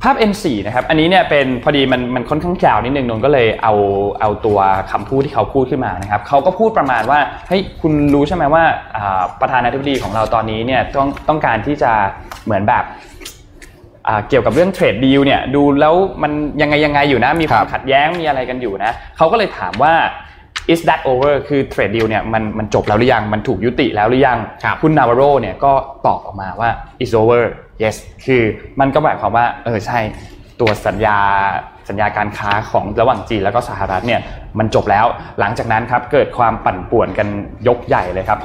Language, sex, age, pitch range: Thai, male, 20-39, 105-140 Hz